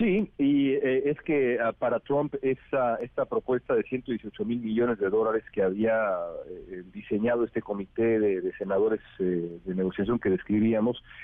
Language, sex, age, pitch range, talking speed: Spanish, male, 40-59, 105-135 Hz, 165 wpm